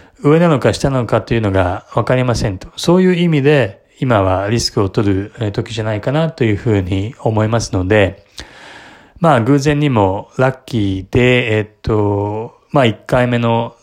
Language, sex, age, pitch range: Japanese, male, 20-39, 100-130 Hz